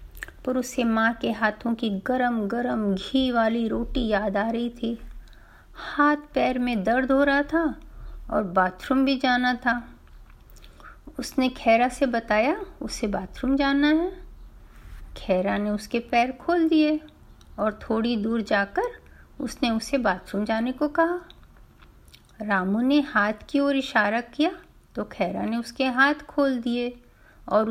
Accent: native